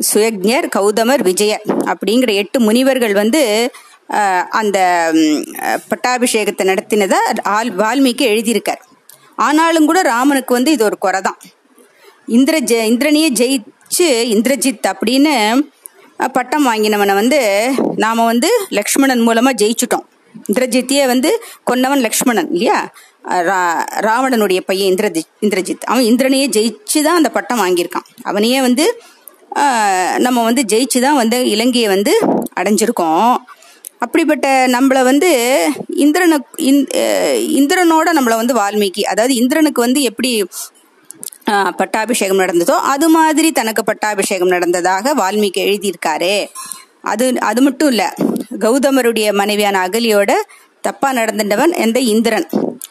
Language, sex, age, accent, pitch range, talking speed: Tamil, female, 30-49, native, 210-280 Hz, 105 wpm